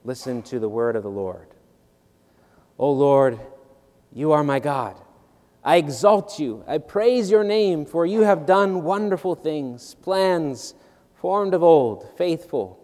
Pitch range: 125-170 Hz